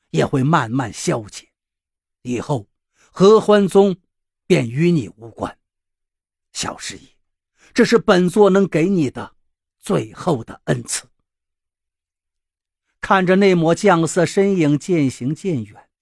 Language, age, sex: Chinese, 50-69, male